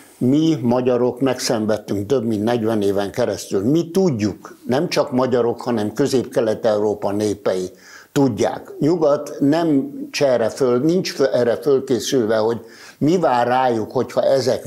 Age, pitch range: 60-79, 120-140 Hz